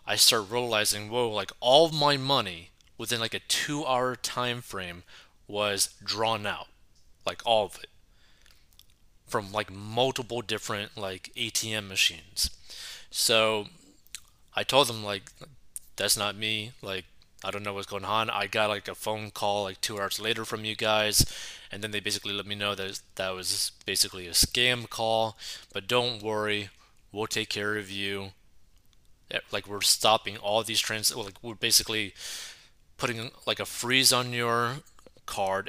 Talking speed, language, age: 160 wpm, English, 20-39